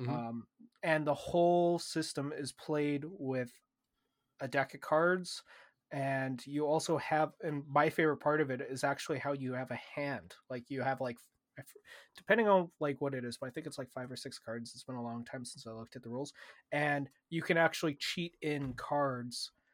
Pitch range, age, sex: 130-150 Hz, 20-39, male